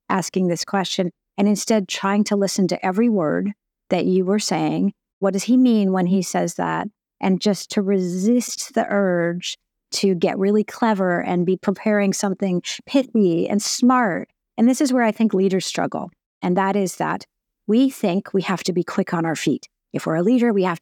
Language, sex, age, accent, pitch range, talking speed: English, female, 50-69, American, 185-225 Hz, 195 wpm